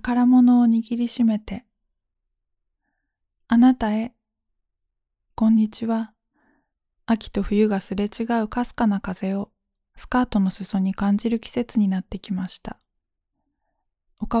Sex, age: female, 20-39